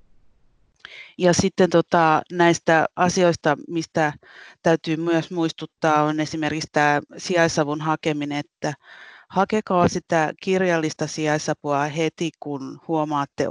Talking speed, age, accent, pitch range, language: 100 wpm, 30-49, native, 150-175 Hz, Finnish